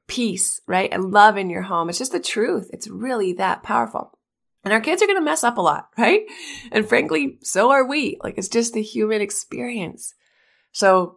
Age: 20-39